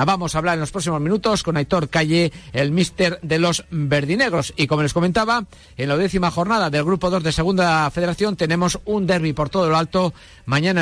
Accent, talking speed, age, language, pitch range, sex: Spanish, 205 wpm, 50-69, Spanish, 130-180 Hz, male